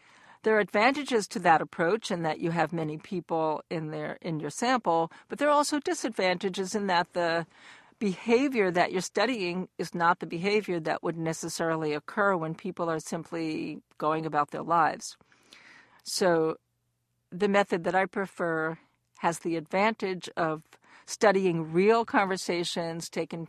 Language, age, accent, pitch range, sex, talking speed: English, 50-69, American, 165-210 Hz, female, 150 wpm